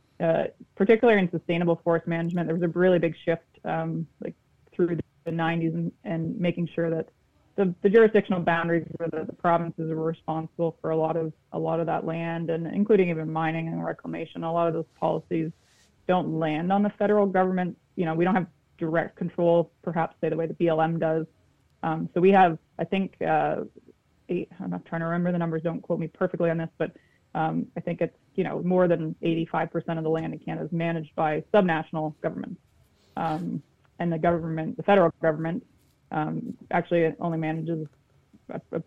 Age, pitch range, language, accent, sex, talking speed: 20-39, 160-175 Hz, English, American, female, 195 wpm